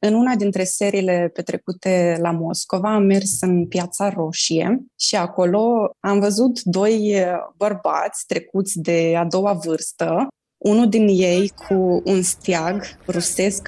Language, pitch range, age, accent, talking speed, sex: Romanian, 180-210 Hz, 20-39, native, 130 wpm, female